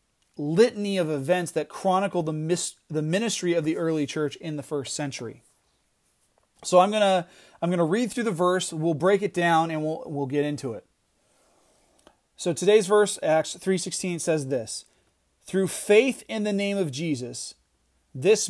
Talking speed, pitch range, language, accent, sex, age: 170 wpm, 150-195 Hz, English, American, male, 30-49